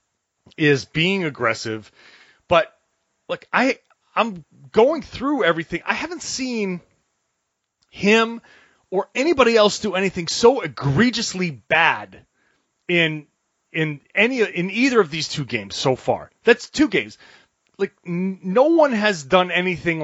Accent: American